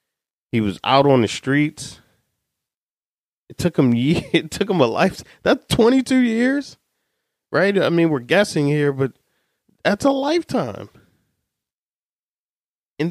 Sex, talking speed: male, 135 wpm